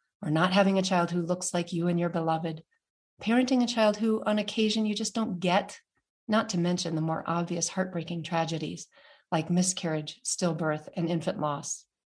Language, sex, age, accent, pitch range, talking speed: English, female, 40-59, American, 165-195 Hz, 180 wpm